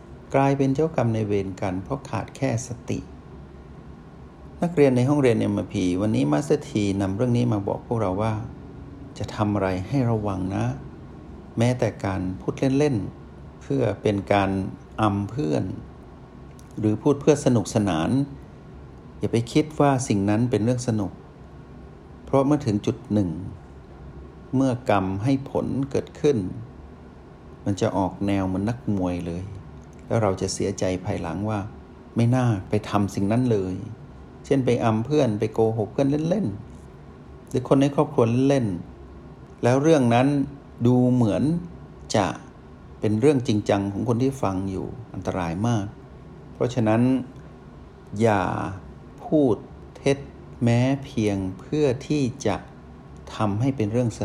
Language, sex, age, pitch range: Thai, male, 60-79, 95-130 Hz